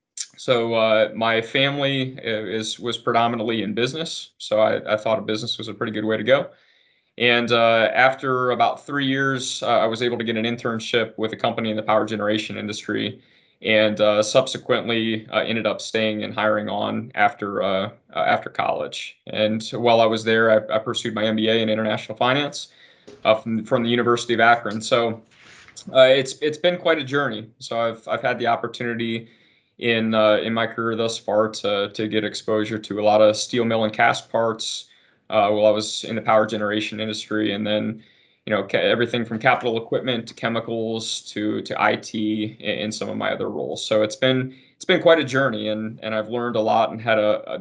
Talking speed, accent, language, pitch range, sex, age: 200 wpm, American, English, 110-120 Hz, male, 20-39